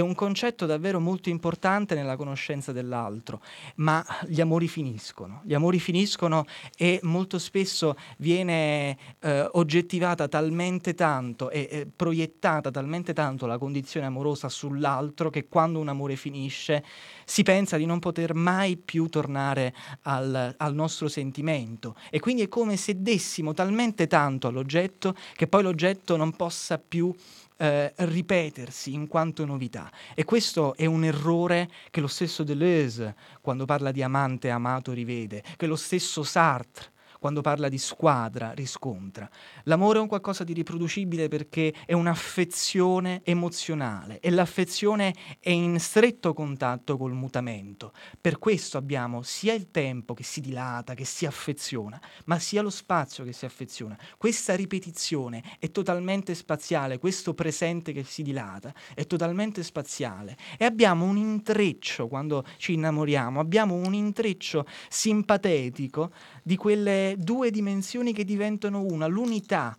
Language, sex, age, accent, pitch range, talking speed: Italian, male, 20-39, native, 140-180 Hz, 140 wpm